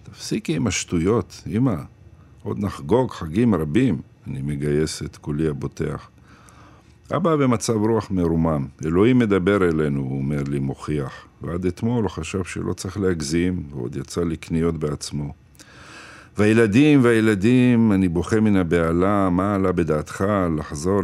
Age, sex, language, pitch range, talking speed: 50-69, male, Hebrew, 75-100 Hz, 130 wpm